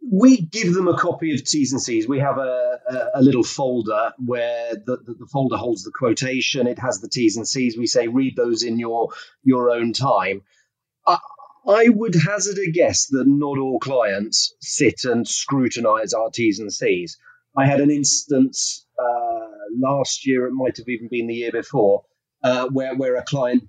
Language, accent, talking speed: English, British, 195 wpm